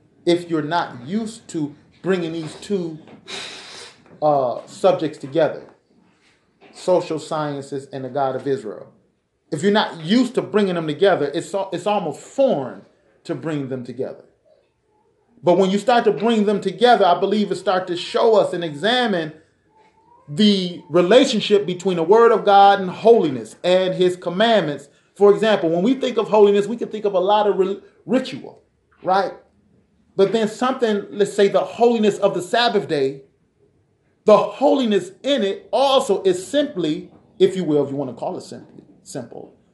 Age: 30-49